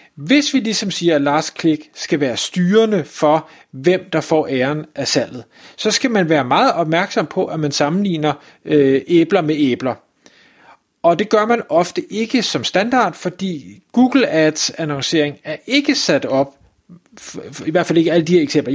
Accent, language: native, Danish